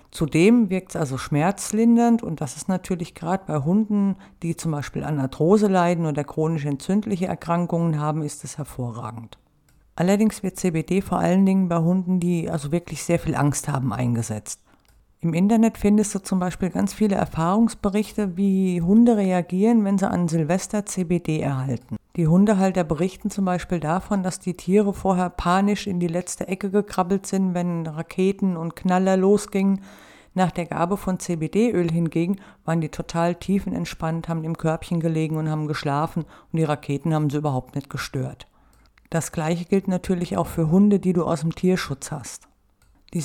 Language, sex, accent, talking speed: German, female, German, 170 wpm